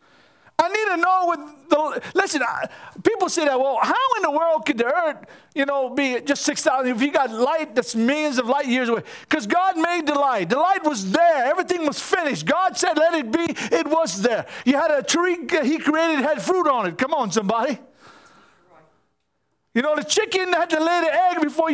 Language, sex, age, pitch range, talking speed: English, male, 50-69, 240-340 Hz, 215 wpm